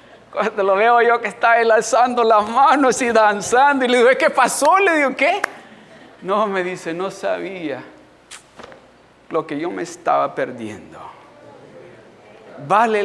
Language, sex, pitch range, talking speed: Spanish, male, 185-245 Hz, 145 wpm